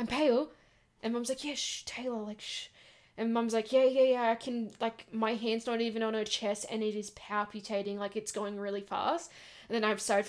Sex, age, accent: female, 10-29, Australian